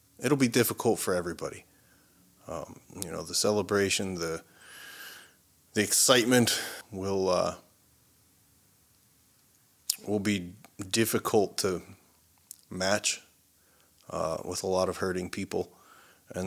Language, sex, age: English, male, 30-49